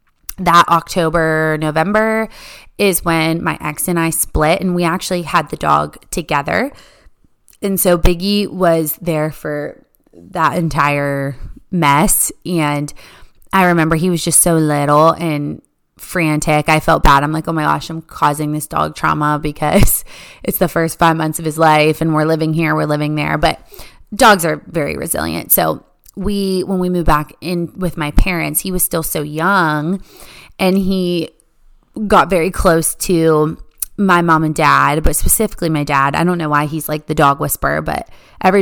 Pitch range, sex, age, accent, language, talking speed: 155-180 Hz, female, 20-39, American, English, 170 wpm